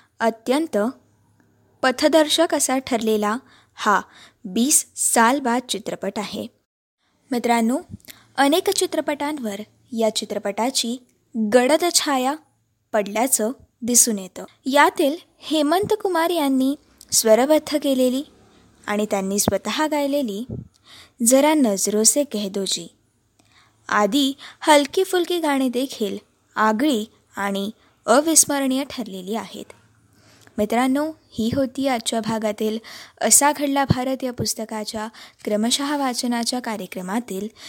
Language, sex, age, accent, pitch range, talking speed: Marathi, female, 20-39, native, 220-290 Hz, 85 wpm